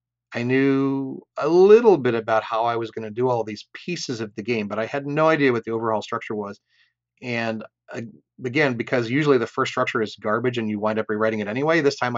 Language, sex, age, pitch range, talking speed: English, male, 30-49, 110-125 Hz, 225 wpm